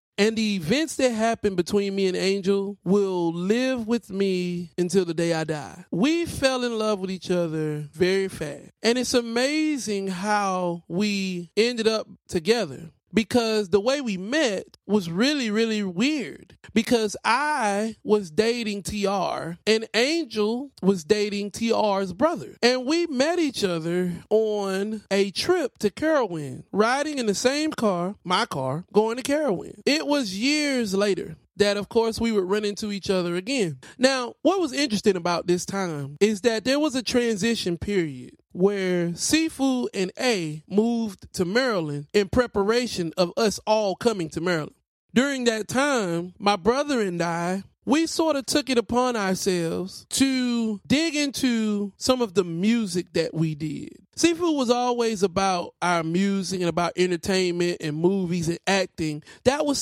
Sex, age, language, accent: male, 30-49, English, American